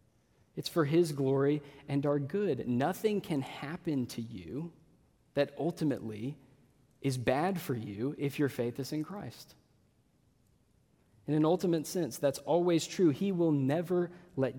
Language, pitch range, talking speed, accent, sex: English, 125-160 Hz, 145 wpm, American, male